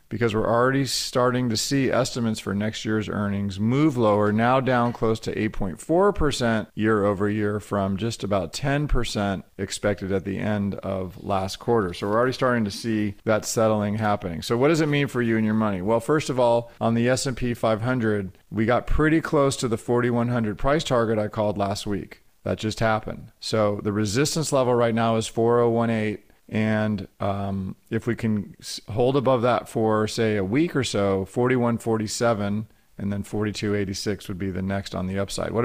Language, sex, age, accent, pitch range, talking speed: English, male, 40-59, American, 105-120 Hz, 185 wpm